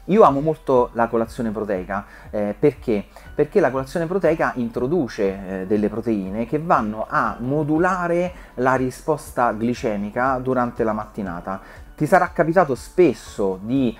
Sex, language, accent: male, Italian, native